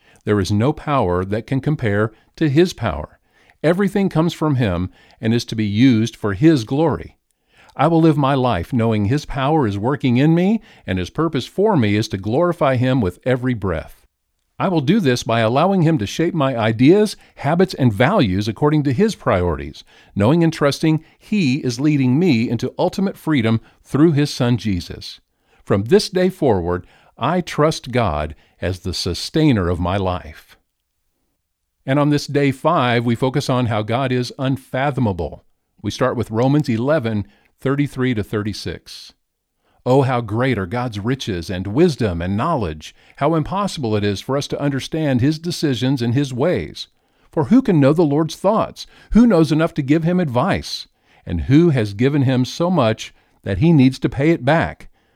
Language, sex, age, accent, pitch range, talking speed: English, male, 50-69, American, 105-155 Hz, 175 wpm